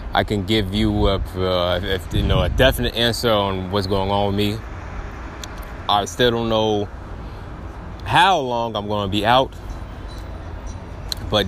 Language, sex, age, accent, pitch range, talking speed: English, male, 20-39, American, 95-110 Hz, 135 wpm